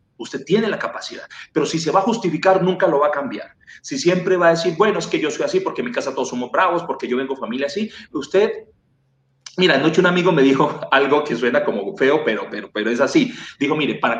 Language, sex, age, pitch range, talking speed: Spanish, male, 40-59, 135-190 Hz, 245 wpm